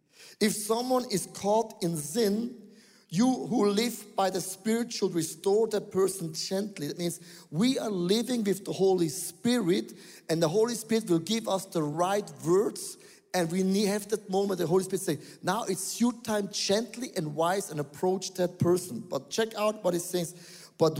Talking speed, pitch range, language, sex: 180 wpm, 170-220 Hz, English, male